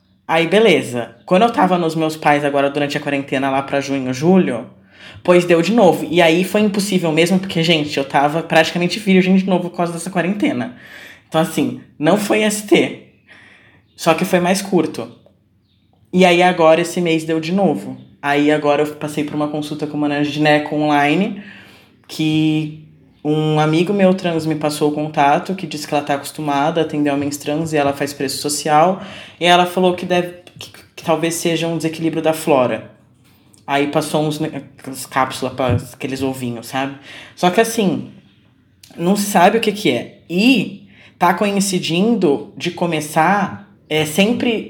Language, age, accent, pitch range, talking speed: Portuguese, 20-39, Brazilian, 145-180 Hz, 175 wpm